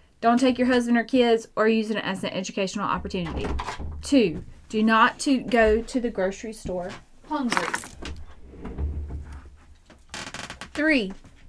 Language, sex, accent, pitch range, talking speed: English, female, American, 175-230 Hz, 120 wpm